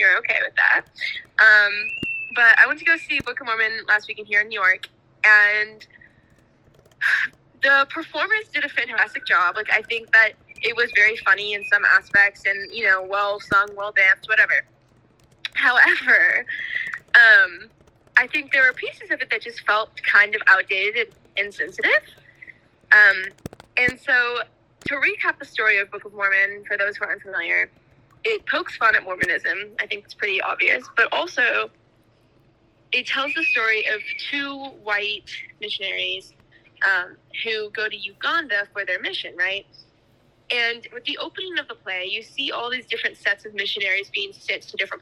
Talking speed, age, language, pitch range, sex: 170 wpm, 10-29, English, 200-300 Hz, female